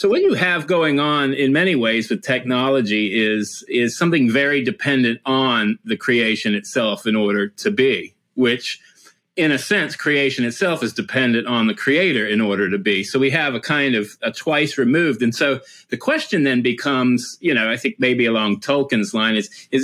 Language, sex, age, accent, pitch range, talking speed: English, male, 40-59, American, 110-150 Hz, 195 wpm